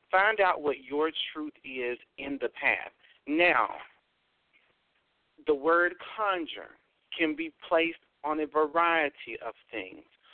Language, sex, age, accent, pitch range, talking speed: English, male, 50-69, American, 130-170 Hz, 120 wpm